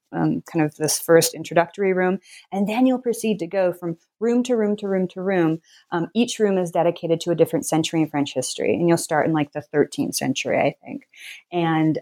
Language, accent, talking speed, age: English, American, 220 wpm, 30-49